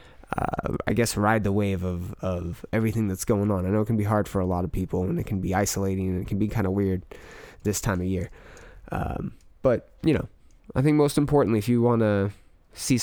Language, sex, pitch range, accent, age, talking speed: English, male, 95-115 Hz, American, 20-39, 240 wpm